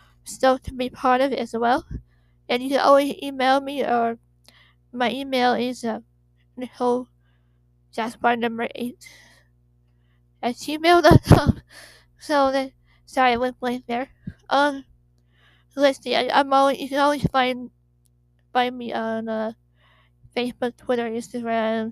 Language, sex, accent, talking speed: English, female, American, 135 wpm